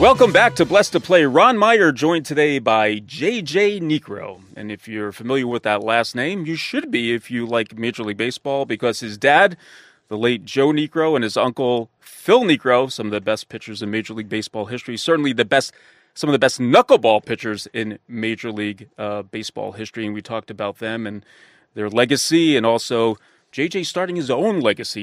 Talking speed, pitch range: 195 wpm, 110-155 Hz